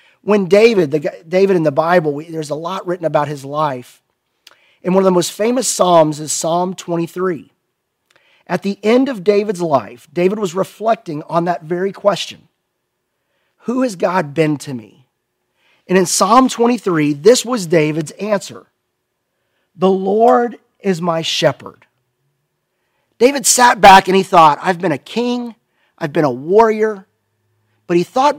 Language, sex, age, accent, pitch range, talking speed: English, male, 40-59, American, 145-200 Hz, 155 wpm